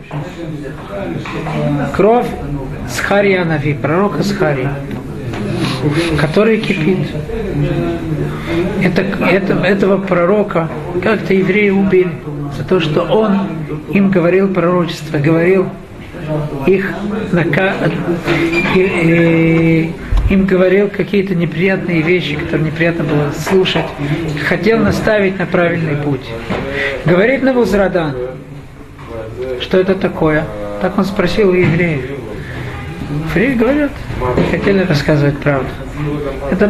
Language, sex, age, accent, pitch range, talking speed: Russian, male, 50-69, native, 150-190 Hz, 90 wpm